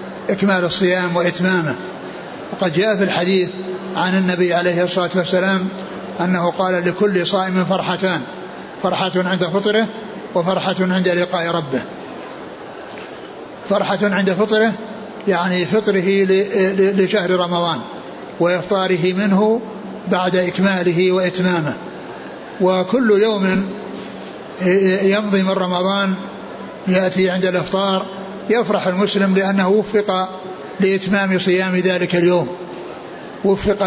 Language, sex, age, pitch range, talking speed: Arabic, male, 60-79, 180-200 Hz, 95 wpm